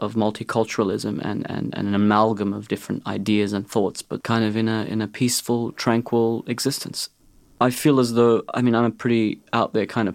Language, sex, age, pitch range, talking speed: English, male, 30-49, 105-120 Hz, 205 wpm